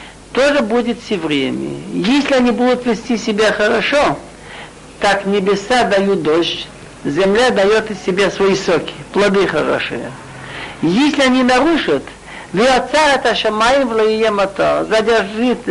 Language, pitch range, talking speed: Russian, 215-270 Hz, 100 wpm